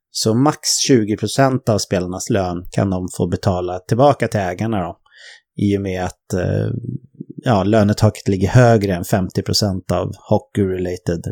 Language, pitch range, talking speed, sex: English, 95-115 Hz, 140 wpm, male